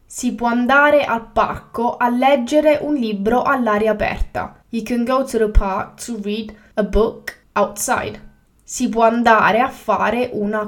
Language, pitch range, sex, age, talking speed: English, 205-250 Hz, female, 10-29, 155 wpm